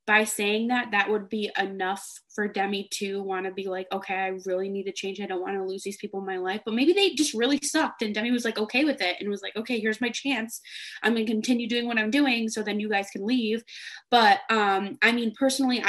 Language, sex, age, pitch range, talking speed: English, female, 20-39, 200-235 Hz, 260 wpm